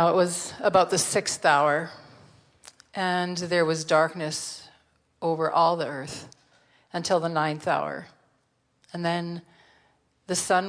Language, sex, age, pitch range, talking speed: English, female, 40-59, 165-190 Hz, 125 wpm